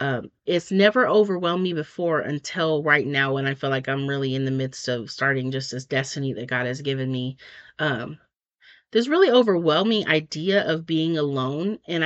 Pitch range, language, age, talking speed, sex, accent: 140-175 Hz, English, 30-49, 185 wpm, female, American